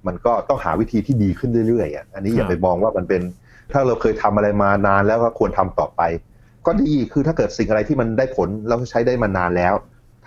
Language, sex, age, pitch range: Thai, male, 30-49, 95-115 Hz